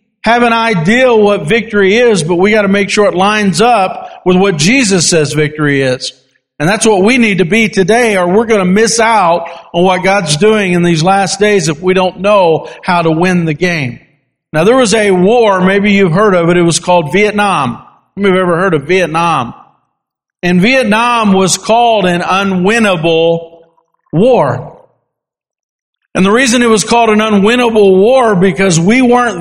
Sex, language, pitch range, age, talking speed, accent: male, English, 170-215 Hz, 50-69, 180 wpm, American